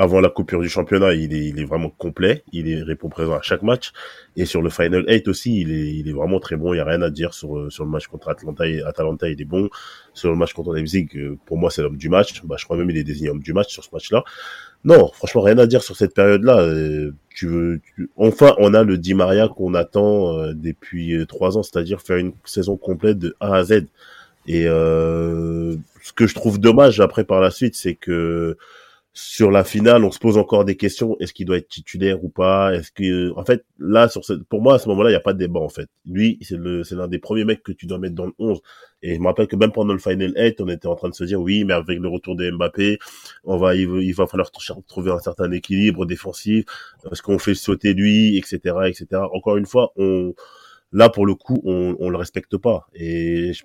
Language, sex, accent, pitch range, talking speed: French, male, French, 85-100 Hz, 250 wpm